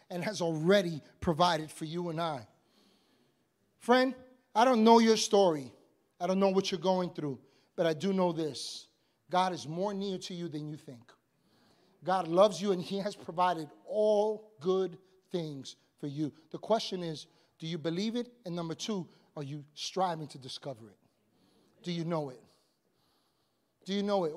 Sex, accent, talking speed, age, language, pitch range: male, American, 175 wpm, 30-49, English, 185-260 Hz